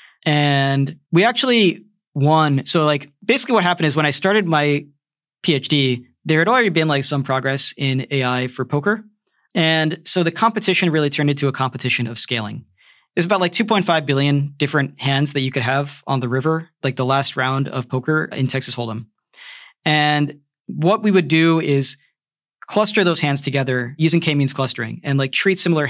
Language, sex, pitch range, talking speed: English, male, 135-170 Hz, 180 wpm